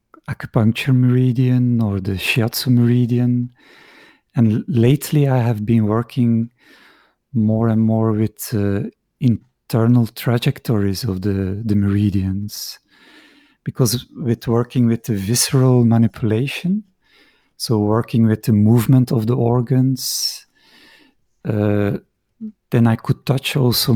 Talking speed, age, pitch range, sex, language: 110 wpm, 50-69, 110-125 Hz, male, English